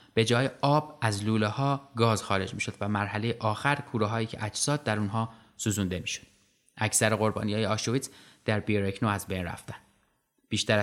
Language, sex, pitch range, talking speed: Persian, male, 110-135 Hz, 155 wpm